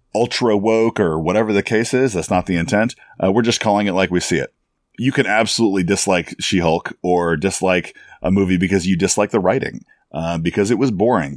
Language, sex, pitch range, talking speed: English, male, 90-115 Hz, 210 wpm